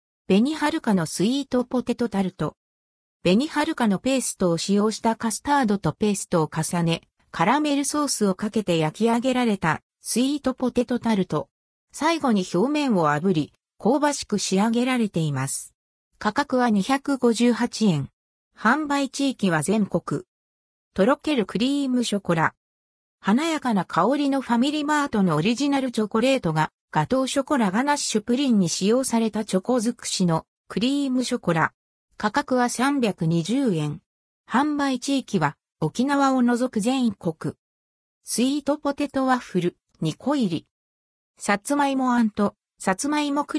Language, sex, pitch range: Japanese, female, 170-265 Hz